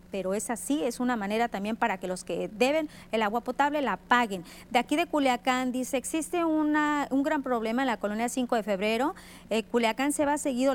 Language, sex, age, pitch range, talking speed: Spanish, female, 40-59, 215-270 Hz, 210 wpm